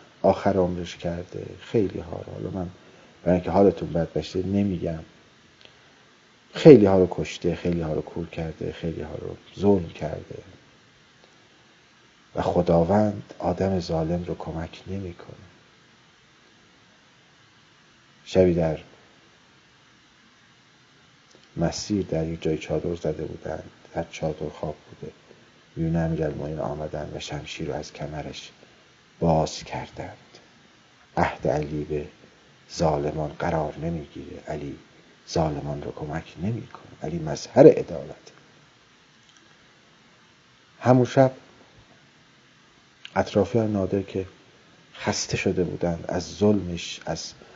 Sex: male